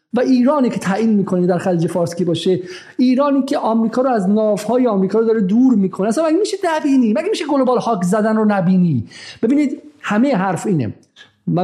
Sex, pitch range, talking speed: male, 185-260 Hz, 185 wpm